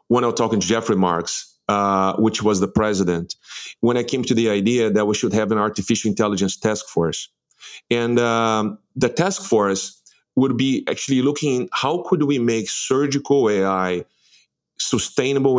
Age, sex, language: 30-49, male, English